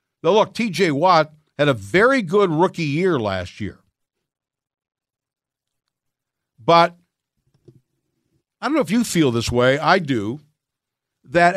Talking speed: 125 wpm